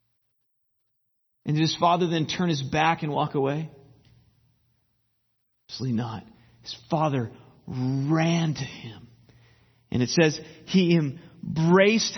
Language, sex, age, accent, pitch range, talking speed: English, male, 40-59, American, 120-175 Hz, 115 wpm